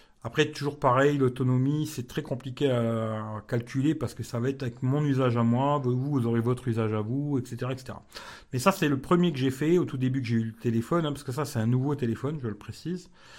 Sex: male